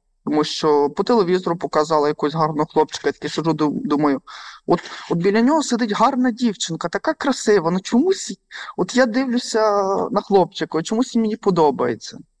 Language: Ukrainian